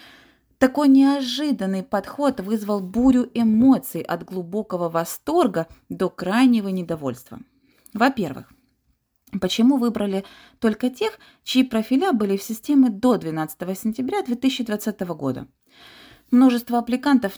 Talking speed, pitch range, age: 100 wpm, 185-260 Hz, 30-49